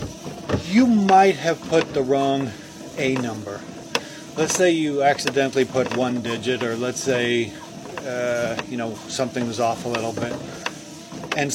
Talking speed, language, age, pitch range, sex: 145 wpm, English, 40-59, 125-150 Hz, male